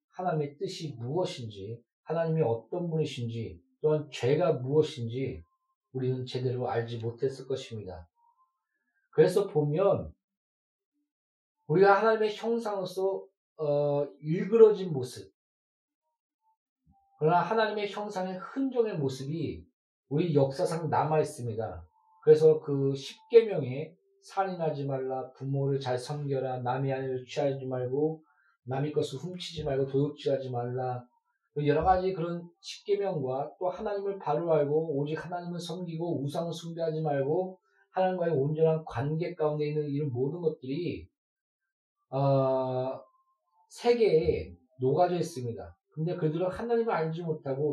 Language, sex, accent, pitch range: Korean, male, native, 135-205 Hz